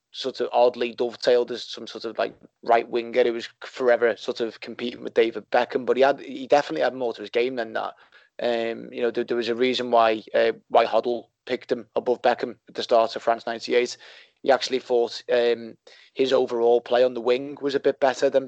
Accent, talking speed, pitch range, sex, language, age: British, 225 wpm, 120-135 Hz, male, English, 20-39